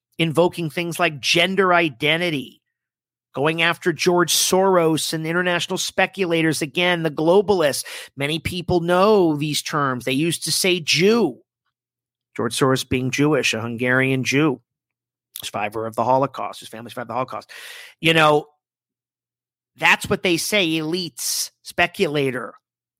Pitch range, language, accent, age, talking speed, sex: 125-170 Hz, English, American, 40-59, 130 wpm, male